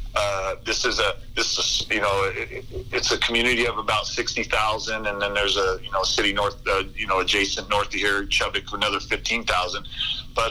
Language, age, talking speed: English, 40-59, 205 wpm